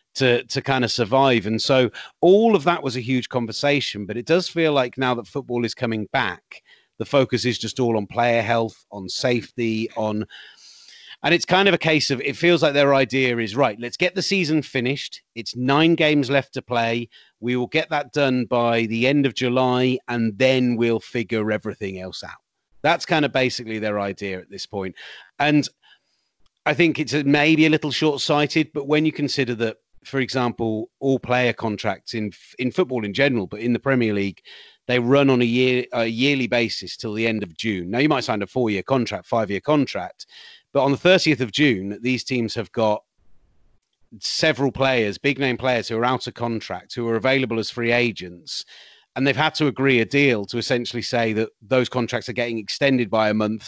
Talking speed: 200 wpm